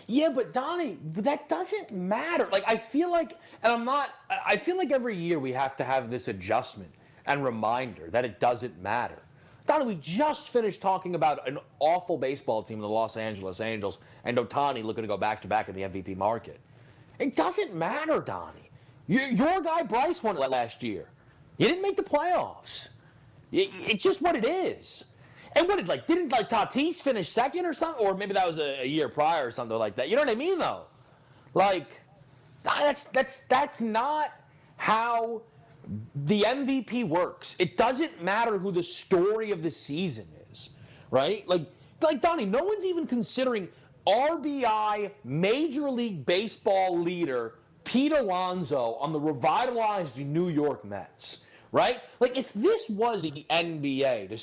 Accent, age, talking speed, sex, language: American, 30-49, 170 wpm, male, English